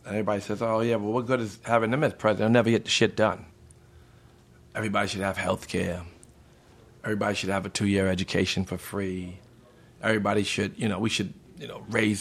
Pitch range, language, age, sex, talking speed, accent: 95-115 Hz, English, 50-69, male, 205 wpm, American